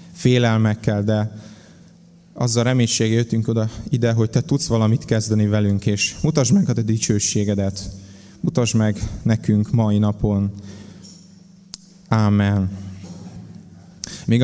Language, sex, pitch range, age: Hungarian, male, 105-135 Hz, 20-39